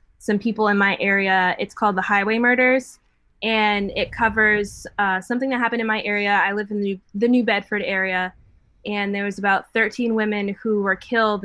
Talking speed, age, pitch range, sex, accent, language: 195 wpm, 10-29, 195-225 Hz, female, American, English